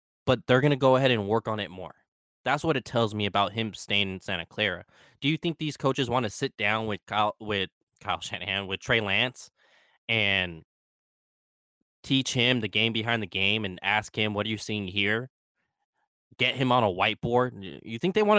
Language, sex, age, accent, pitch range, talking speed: English, male, 20-39, American, 105-130 Hz, 210 wpm